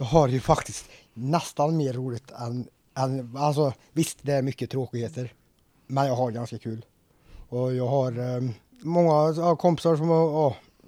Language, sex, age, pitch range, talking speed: Swedish, male, 20-39, 125-150 Hz, 155 wpm